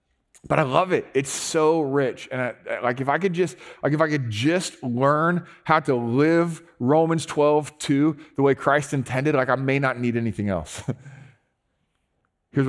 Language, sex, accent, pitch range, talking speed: English, male, American, 125-170 Hz, 180 wpm